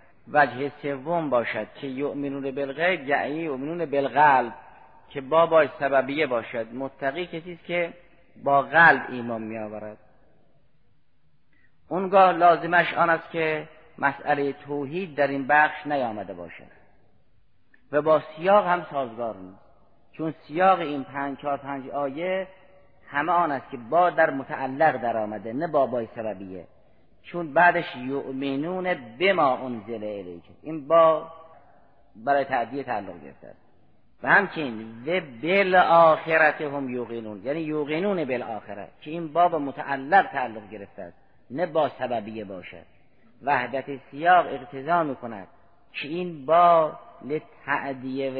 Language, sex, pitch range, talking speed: Persian, male, 130-165 Hz, 120 wpm